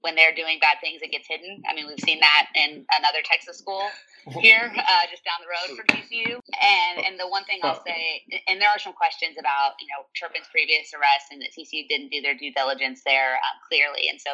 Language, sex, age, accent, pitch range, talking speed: English, female, 30-49, American, 145-225 Hz, 235 wpm